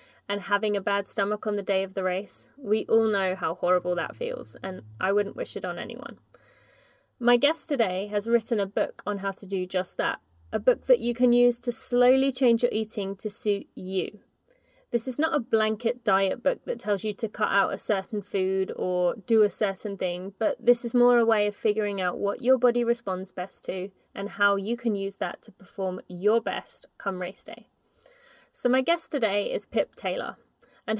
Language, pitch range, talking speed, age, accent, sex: English, 195-245 Hz, 210 wpm, 20-39, British, female